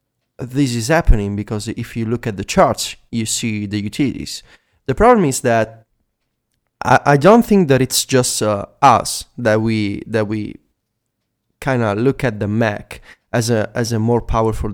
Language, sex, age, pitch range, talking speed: English, male, 30-49, 110-145 Hz, 175 wpm